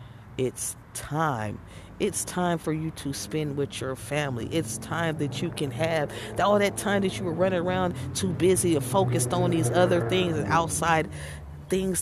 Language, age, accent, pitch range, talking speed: English, 40-59, American, 125-165 Hz, 185 wpm